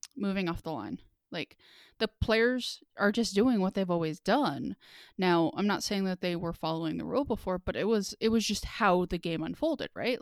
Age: 20-39